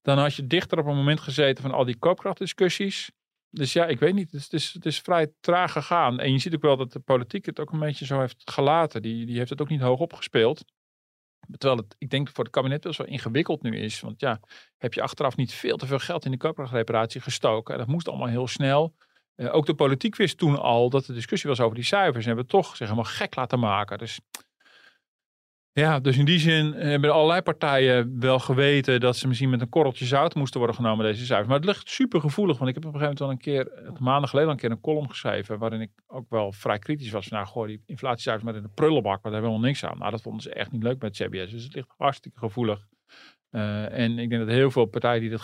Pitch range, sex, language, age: 115-150 Hz, male, Dutch, 40-59